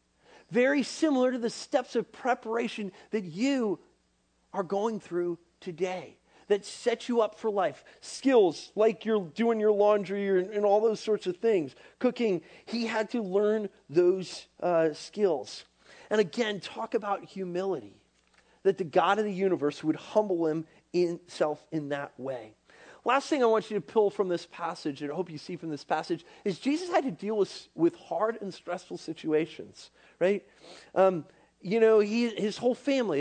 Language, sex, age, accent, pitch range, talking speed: English, male, 40-59, American, 155-220 Hz, 170 wpm